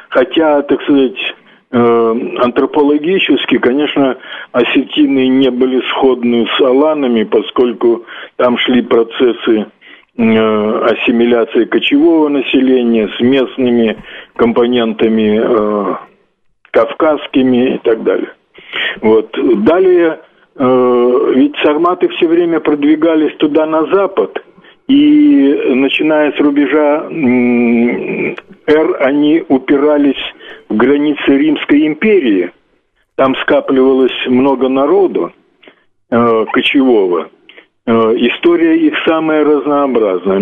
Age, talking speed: 50-69, 90 wpm